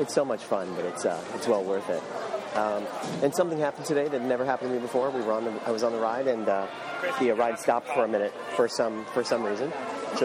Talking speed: 270 wpm